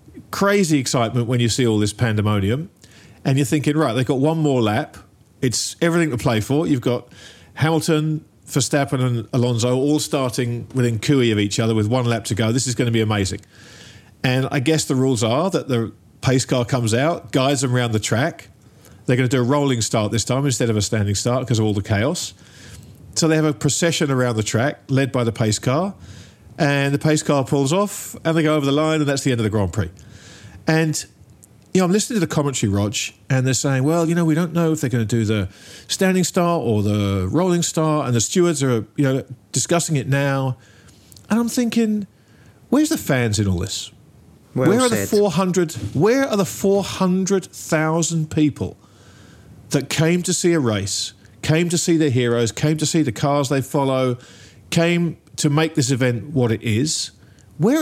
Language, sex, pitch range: English, male, 110-155 Hz